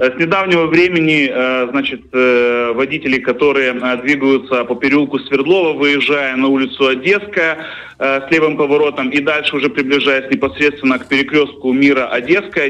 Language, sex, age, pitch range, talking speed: Russian, male, 30-49, 125-145 Hz, 120 wpm